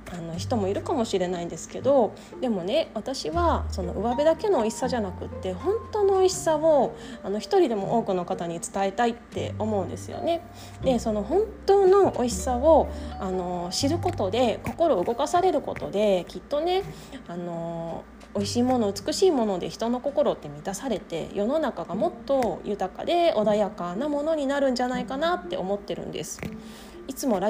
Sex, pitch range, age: female, 195-290 Hz, 20-39